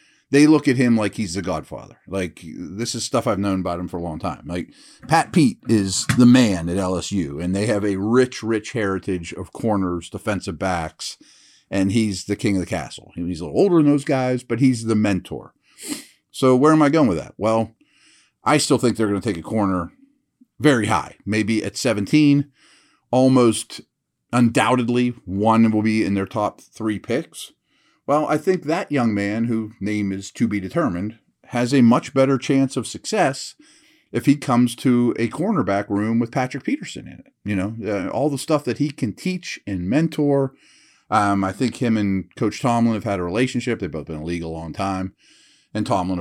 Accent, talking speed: American, 200 wpm